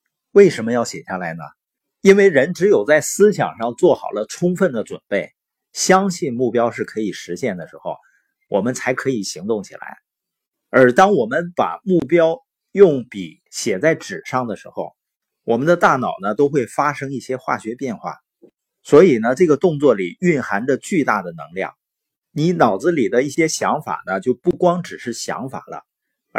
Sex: male